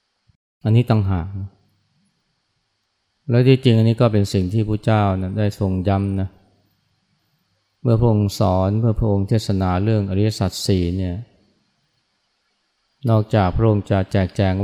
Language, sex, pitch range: Thai, male, 95-110 Hz